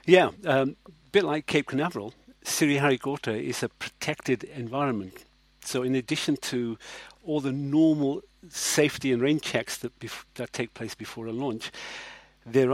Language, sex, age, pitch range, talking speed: English, male, 50-69, 115-145 Hz, 150 wpm